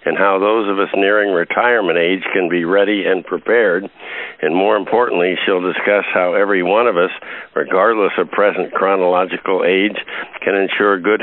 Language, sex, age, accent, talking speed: English, male, 60-79, American, 165 wpm